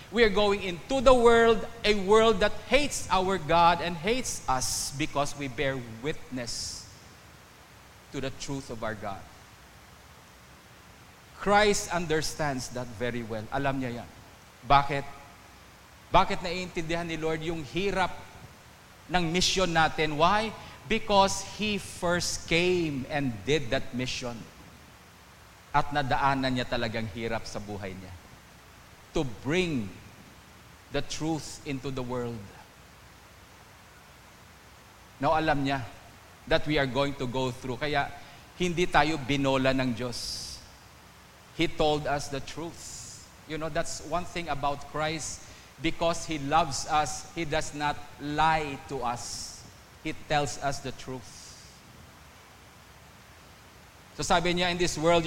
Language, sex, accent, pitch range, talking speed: English, male, Filipino, 115-165 Hz, 125 wpm